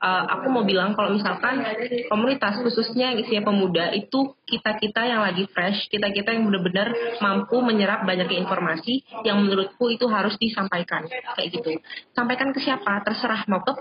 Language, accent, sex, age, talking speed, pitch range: Indonesian, native, female, 20-39, 165 wpm, 195-245 Hz